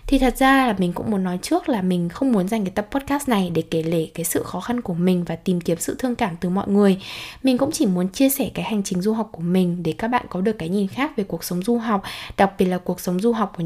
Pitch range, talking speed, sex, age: 185-240 Hz, 310 wpm, female, 10-29